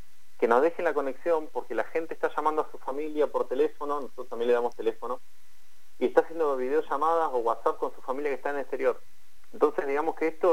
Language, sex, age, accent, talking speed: Spanish, male, 40-59, Argentinian, 215 wpm